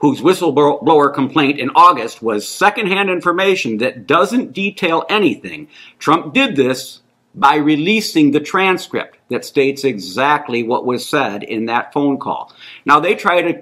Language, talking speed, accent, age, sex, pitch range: English, 145 wpm, American, 50-69, male, 145-240 Hz